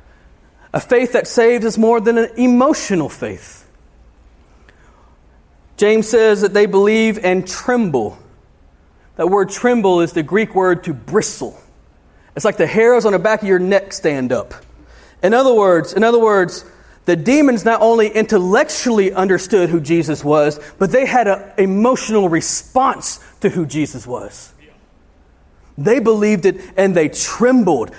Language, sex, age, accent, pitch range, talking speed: English, male, 40-59, American, 175-240 Hz, 150 wpm